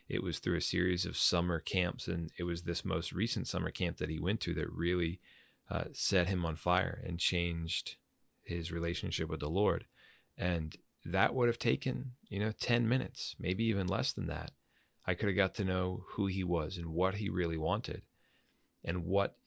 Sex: male